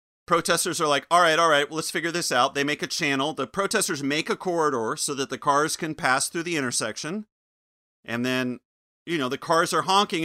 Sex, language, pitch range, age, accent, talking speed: male, English, 140-170 Hz, 30-49, American, 215 wpm